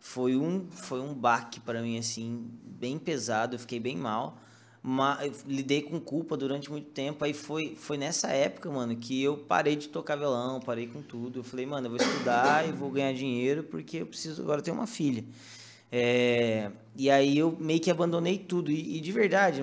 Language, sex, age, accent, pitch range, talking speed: Portuguese, male, 20-39, Brazilian, 125-165 Hz, 200 wpm